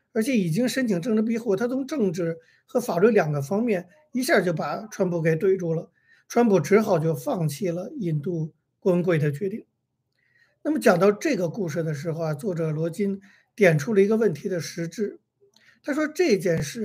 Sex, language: male, Chinese